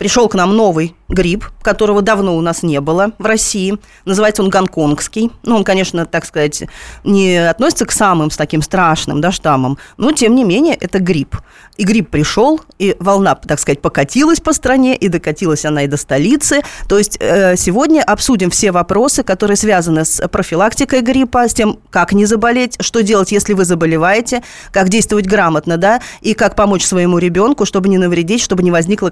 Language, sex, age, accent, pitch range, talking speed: Russian, female, 20-39, native, 180-220 Hz, 180 wpm